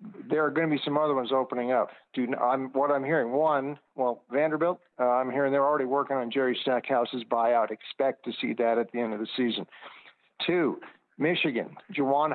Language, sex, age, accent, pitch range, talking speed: English, male, 50-69, American, 125-140 Hz, 200 wpm